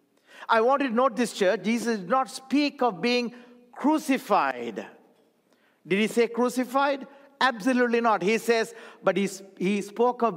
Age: 50-69